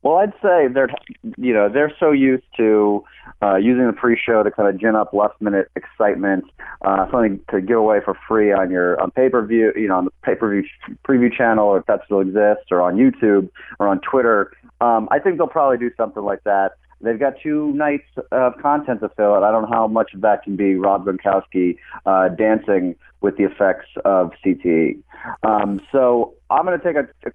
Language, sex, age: English, male, 30-49